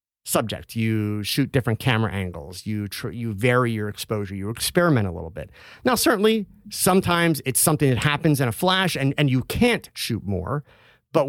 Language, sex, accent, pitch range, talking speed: English, male, American, 105-155 Hz, 180 wpm